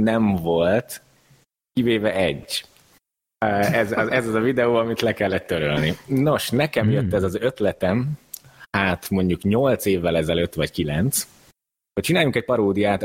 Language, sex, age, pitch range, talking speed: Hungarian, male, 30-49, 95-120 Hz, 140 wpm